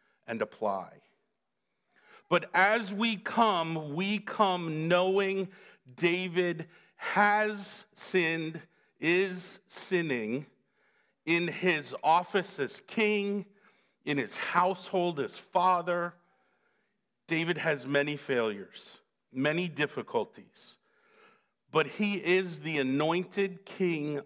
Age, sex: 50-69, male